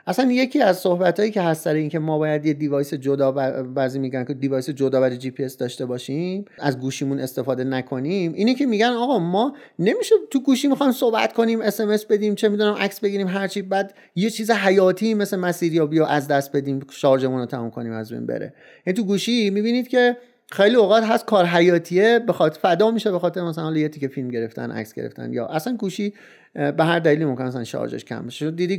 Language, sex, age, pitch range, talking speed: Persian, male, 30-49, 135-195 Hz, 205 wpm